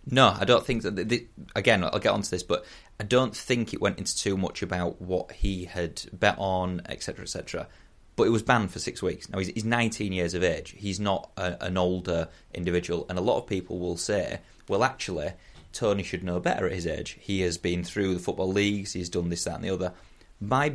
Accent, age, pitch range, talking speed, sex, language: British, 30-49, 90-110 Hz, 240 wpm, male, English